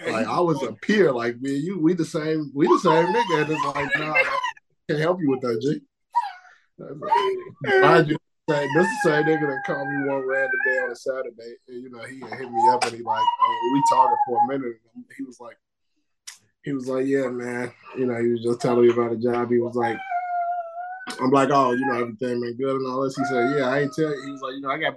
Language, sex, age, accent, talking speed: English, male, 20-39, American, 260 wpm